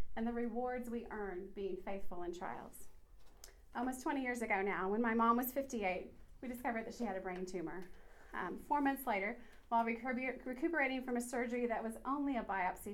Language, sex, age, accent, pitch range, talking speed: English, female, 30-49, American, 200-250 Hz, 190 wpm